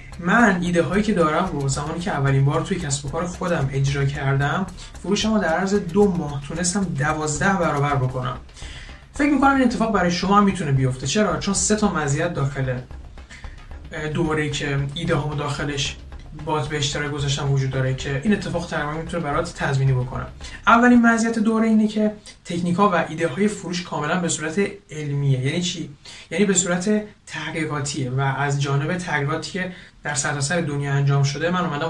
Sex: male